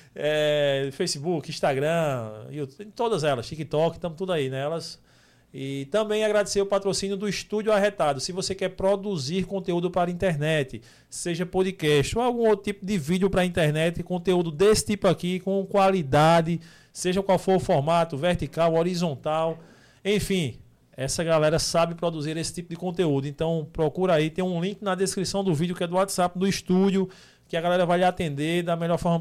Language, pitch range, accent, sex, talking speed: Portuguese, 155-195 Hz, Brazilian, male, 175 wpm